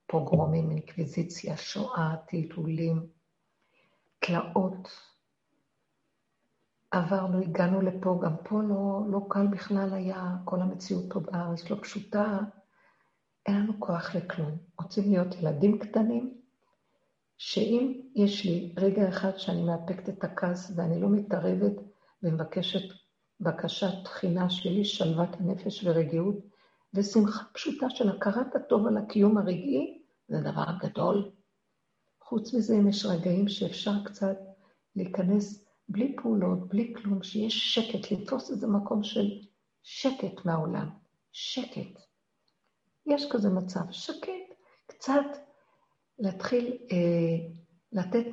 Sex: female